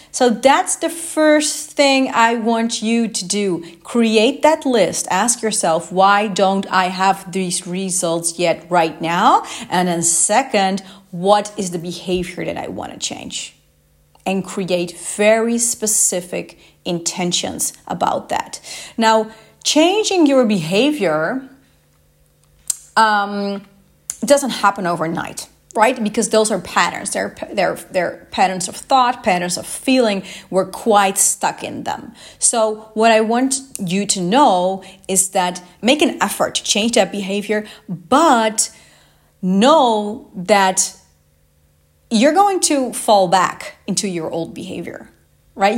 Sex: female